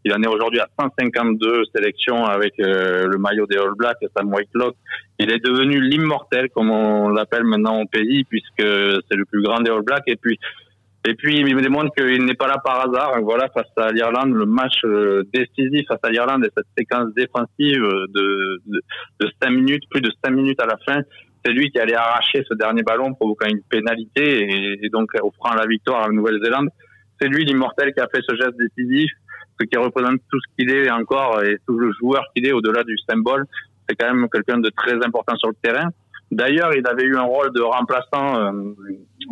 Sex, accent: male, French